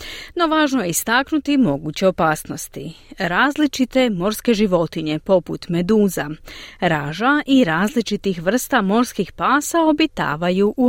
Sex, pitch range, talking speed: female, 170-270 Hz, 105 wpm